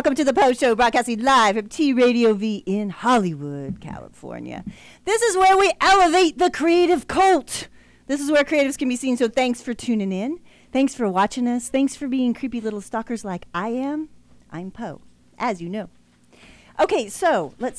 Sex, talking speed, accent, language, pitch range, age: female, 180 wpm, American, English, 195-270 Hz, 40-59